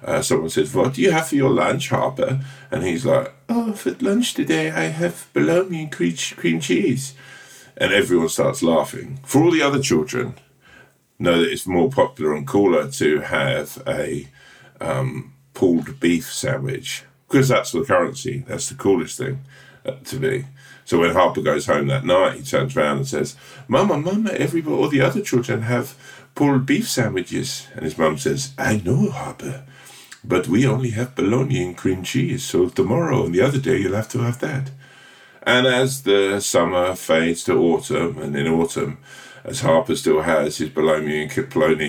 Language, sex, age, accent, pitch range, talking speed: English, male, 50-69, British, 90-135 Hz, 175 wpm